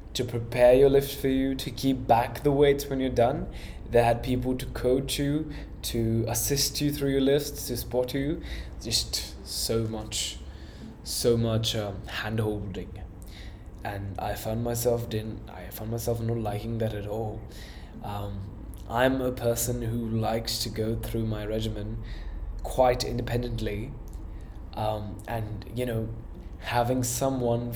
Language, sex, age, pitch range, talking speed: English, male, 10-29, 105-125 Hz, 150 wpm